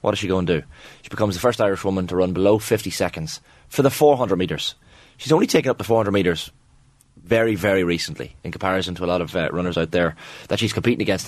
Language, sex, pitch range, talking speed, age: English, male, 90-115 Hz, 240 wpm, 20-39